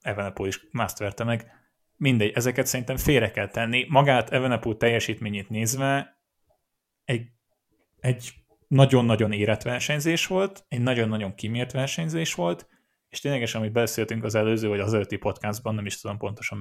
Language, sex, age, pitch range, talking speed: Hungarian, male, 20-39, 105-125 Hz, 140 wpm